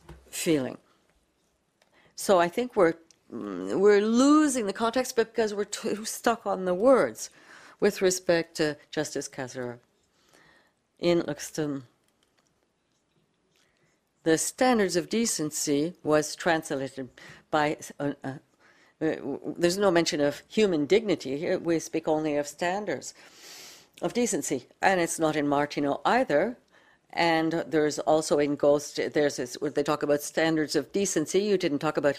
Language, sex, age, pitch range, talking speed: English, female, 60-79, 150-200 Hz, 130 wpm